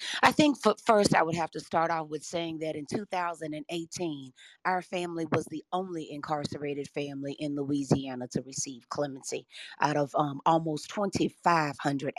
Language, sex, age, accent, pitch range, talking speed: English, female, 40-59, American, 150-200 Hz, 160 wpm